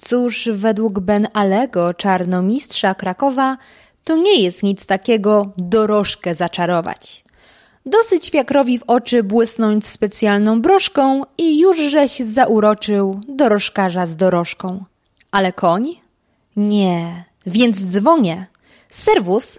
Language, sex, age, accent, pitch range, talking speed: Polish, female, 20-39, native, 195-275 Hz, 100 wpm